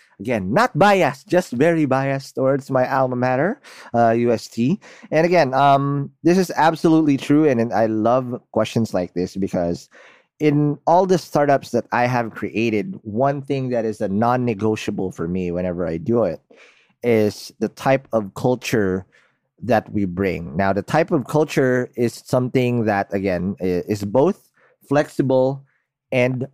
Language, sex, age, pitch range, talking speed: English, male, 30-49, 105-145 Hz, 150 wpm